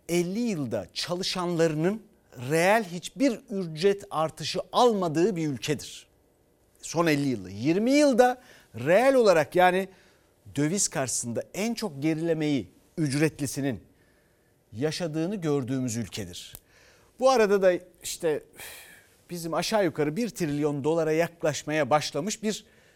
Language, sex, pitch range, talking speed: Turkish, male, 150-215 Hz, 105 wpm